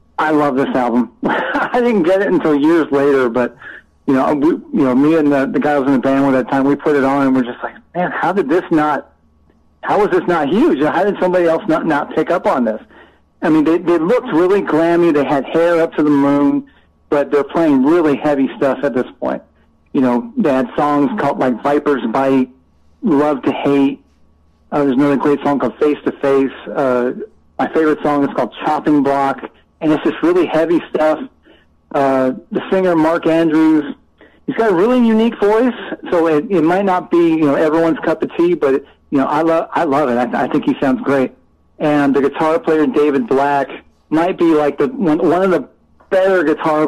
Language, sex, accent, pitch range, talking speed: English, male, American, 135-165 Hz, 220 wpm